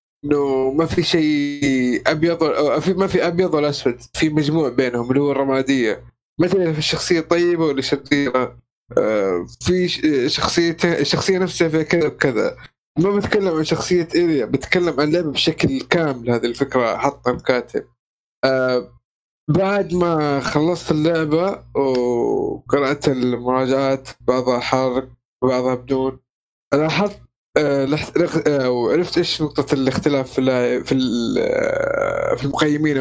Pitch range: 130-165 Hz